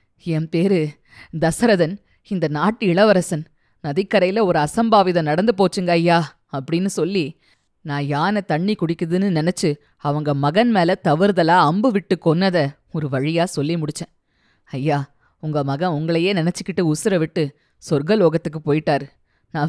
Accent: native